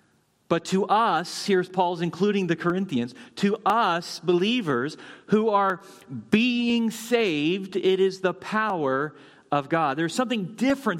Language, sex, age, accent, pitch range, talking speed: English, male, 40-59, American, 185-250 Hz, 130 wpm